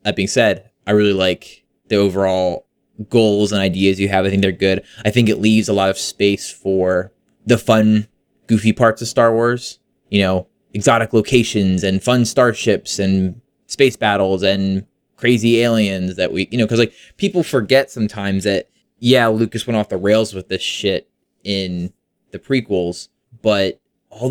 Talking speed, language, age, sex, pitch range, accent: 175 wpm, English, 20-39, male, 95-115 Hz, American